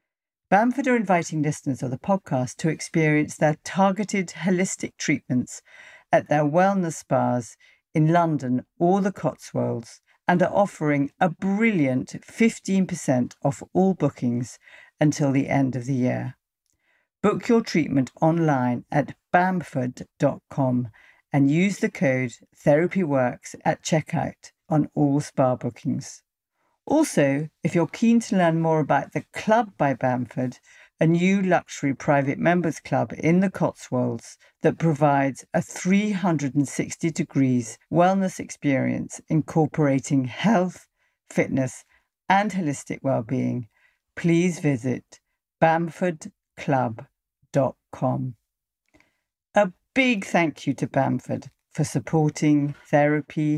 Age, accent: 50-69, British